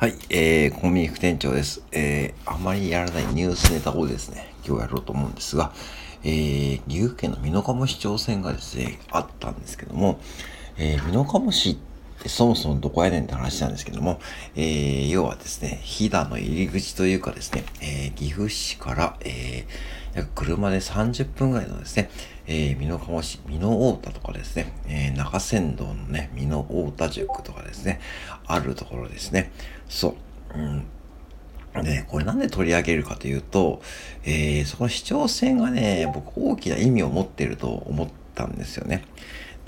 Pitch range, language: 70-95 Hz, Japanese